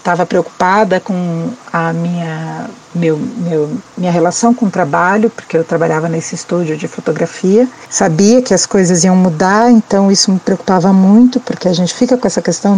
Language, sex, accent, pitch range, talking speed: Portuguese, female, Brazilian, 190-245 Hz, 175 wpm